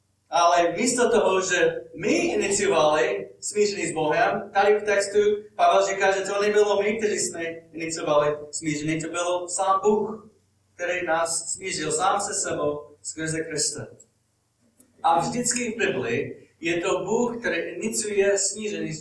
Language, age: Czech, 30-49